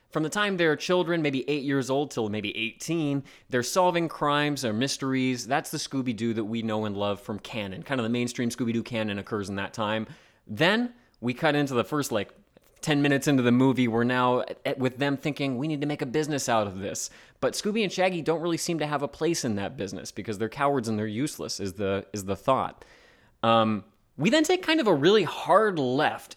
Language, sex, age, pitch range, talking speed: English, male, 30-49, 115-150 Hz, 230 wpm